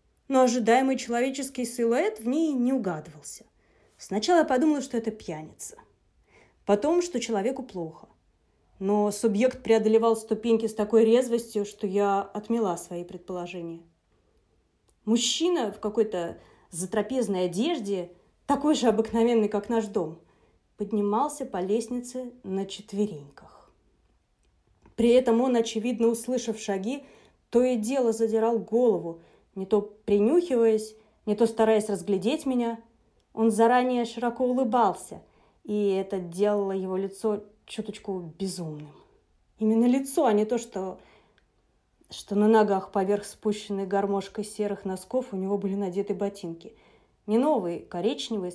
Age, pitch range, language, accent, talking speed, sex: 20-39, 200-240 Hz, Russian, native, 120 wpm, female